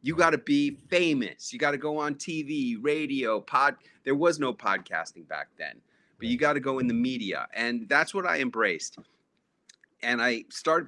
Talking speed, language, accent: 175 wpm, English, American